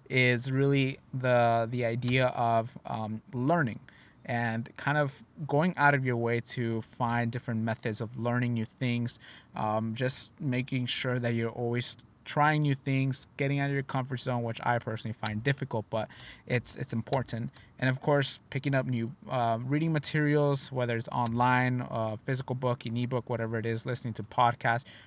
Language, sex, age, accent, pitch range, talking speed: English, male, 20-39, American, 115-140 Hz, 170 wpm